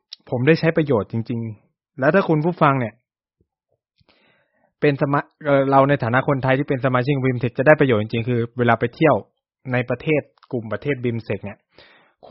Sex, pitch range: male, 115-145 Hz